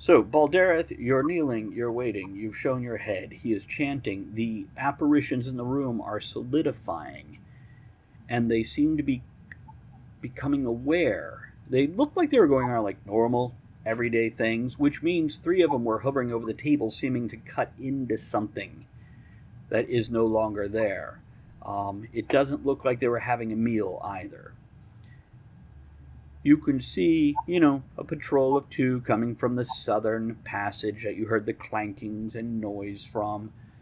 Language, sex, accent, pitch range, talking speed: English, male, American, 105-135 Hz, 160 wpm